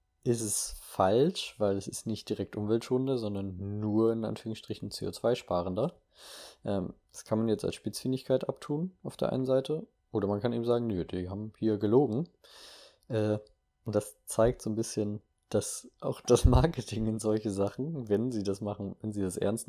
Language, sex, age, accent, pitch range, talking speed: German, male, 20-39, German, 100-120 Hz, 175 wpm